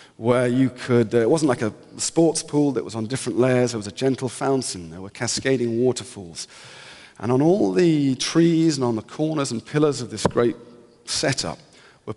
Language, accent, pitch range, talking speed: English, British, 110-140 Hz, 195 wpm